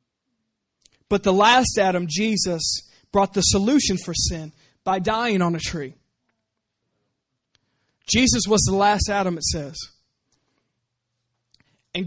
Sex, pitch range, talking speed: male, 155-205 Hz, 115 wpm